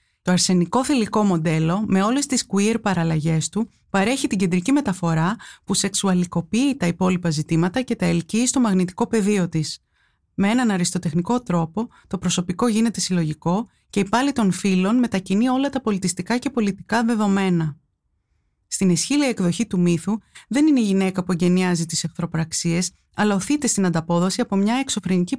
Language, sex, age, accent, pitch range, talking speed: Greek, female, 20-39, native, 175-230 Hz, 155 wpm